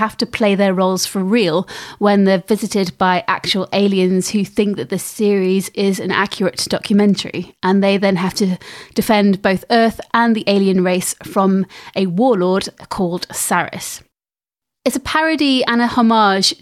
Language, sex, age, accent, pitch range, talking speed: English, female, 30-49, British, 190-220 Hz, 165 wpm